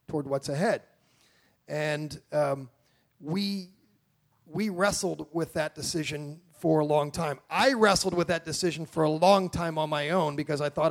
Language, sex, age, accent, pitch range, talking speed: English, male, 40-59, American, 155-195 Hz, 165 wpm